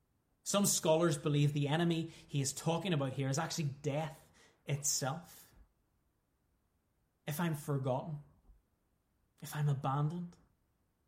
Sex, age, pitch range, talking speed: male, 20-39, 120-155 Hz, 110 wpm